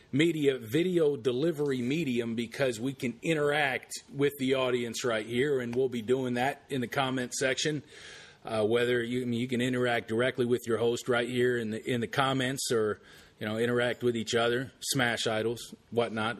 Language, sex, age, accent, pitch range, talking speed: English, male, 40-59, American, 120-140 Hz, 180 wpm